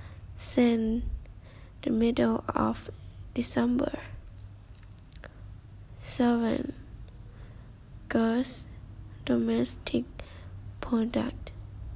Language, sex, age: Thai, female, 10-29